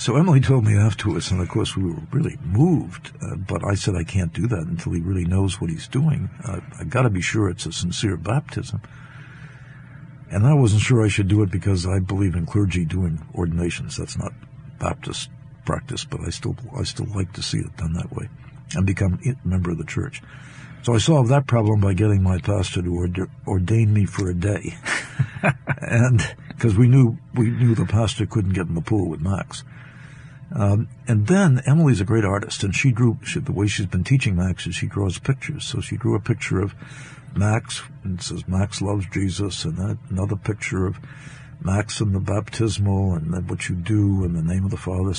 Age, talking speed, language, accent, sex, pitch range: 60-79, 210 wpm, English, American, male, 95-135 Hz